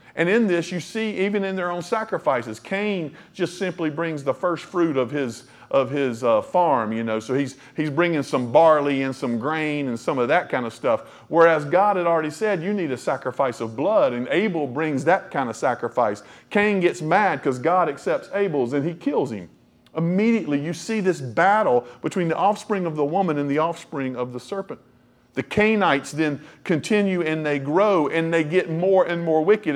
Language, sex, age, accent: English, male, 40-59, American